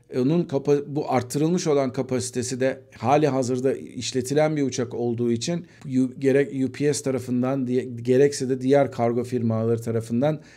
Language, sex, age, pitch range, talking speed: Turkish, male, 50-69, 125-145 Hz, 140 wpm